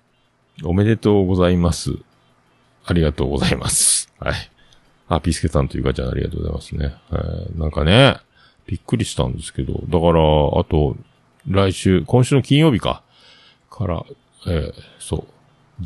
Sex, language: male, Japanese